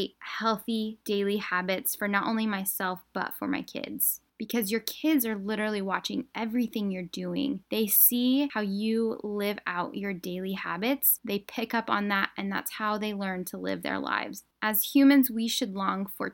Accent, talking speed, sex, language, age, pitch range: American, 180 wpm, female, English, 10-29, 195-230 Hz